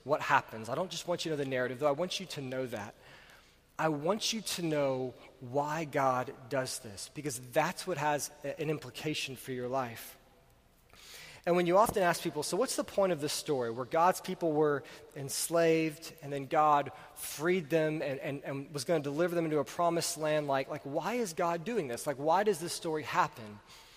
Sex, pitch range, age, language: male, 145-190 Hz, 30-49, English